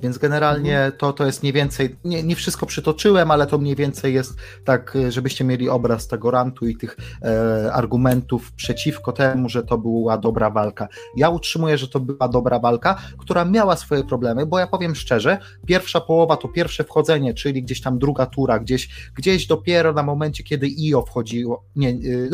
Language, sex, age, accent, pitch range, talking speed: Polish, male, 30-49, native, 120-150 Hz, 185 wpm